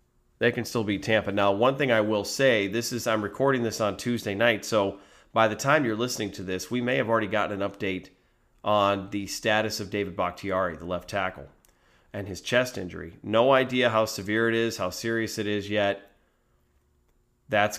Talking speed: 200 wpm